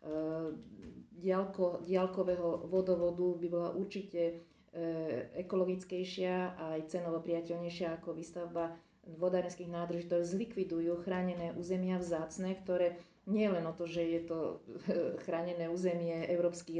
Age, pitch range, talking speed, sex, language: 40-59, 170-185 Hz, 120 wpm, female, Slovak